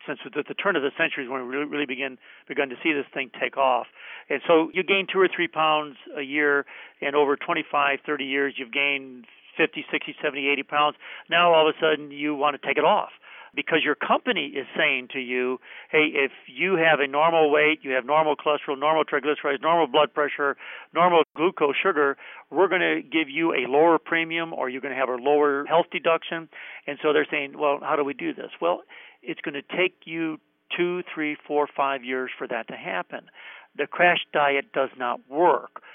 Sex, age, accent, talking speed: male, 50-69, American, 210 wpm